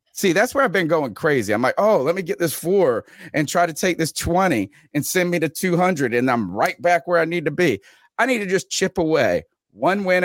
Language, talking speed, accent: English, 250 wpm, American